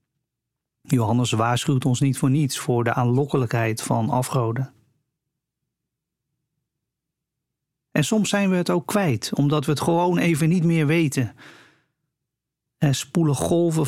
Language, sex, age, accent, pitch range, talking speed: Dutch, male, 40-59, Dutch, 130-155 Hz, 125 wpm